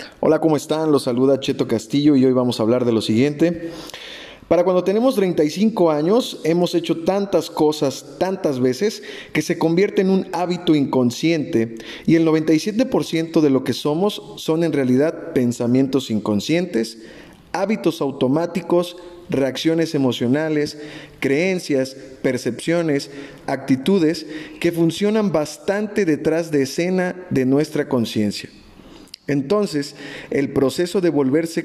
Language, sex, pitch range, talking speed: Spanish, male, 135-175 Hz, 125 wpm